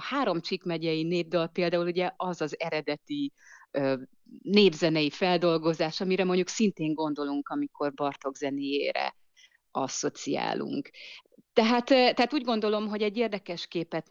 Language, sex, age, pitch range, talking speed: Hungarian, female, 30-49, 150-200 Hz, 115 wpm